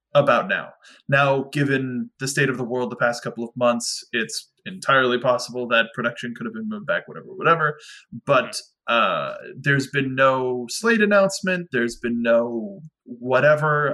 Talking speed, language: 160 wpm, English